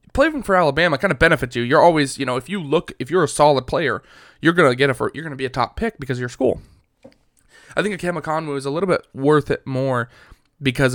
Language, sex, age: English, male, 20-39